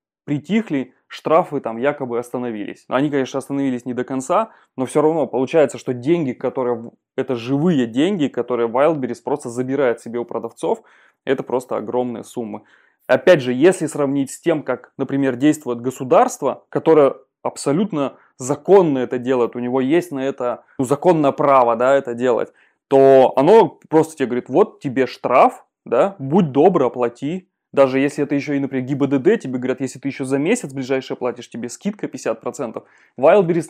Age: 20-39